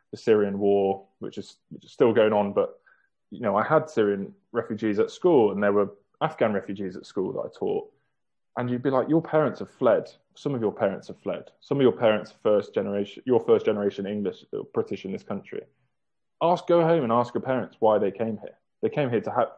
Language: English